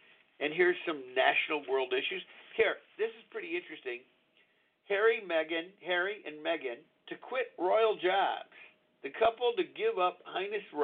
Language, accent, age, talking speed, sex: English, American, 50-69, 145 wpm, male